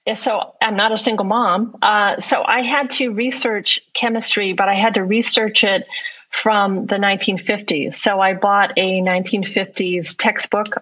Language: English